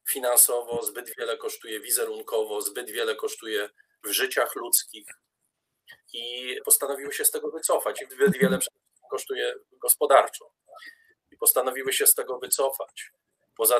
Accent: native